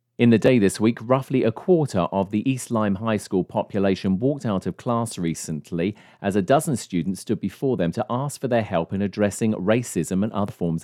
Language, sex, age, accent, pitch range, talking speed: English, male, 40-59, British, 90-120 Hz, 210 wpm